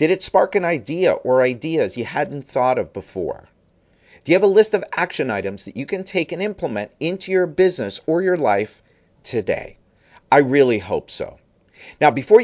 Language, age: English, 50-69